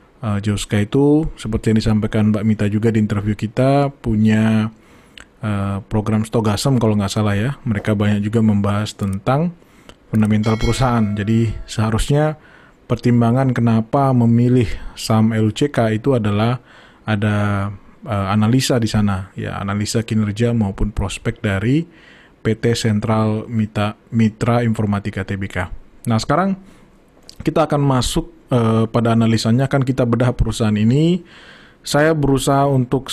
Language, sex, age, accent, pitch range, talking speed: Indonesian, male, 20-39, native, 110-125 Hz, 120 wpm